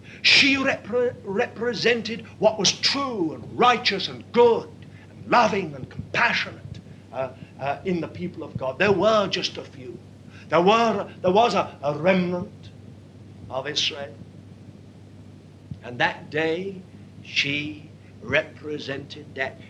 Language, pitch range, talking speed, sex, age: English, 105-160 Hz, 120 wpm, male, 60-79